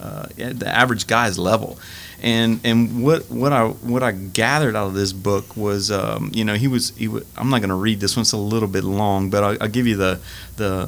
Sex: male